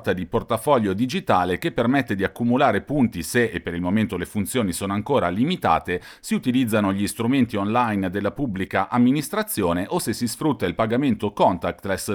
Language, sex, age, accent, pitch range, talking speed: Italian, male, 40-59, native, 95-130 Hz, 165 wpm